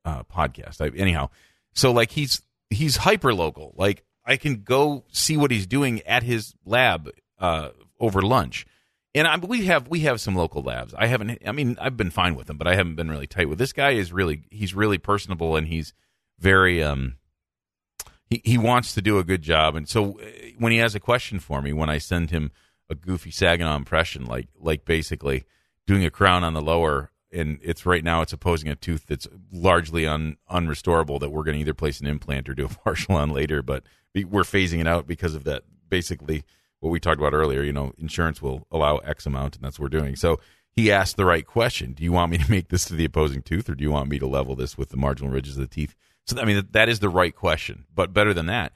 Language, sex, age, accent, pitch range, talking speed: English, male, 40-59, American, 75-100 Hz, 230 wpm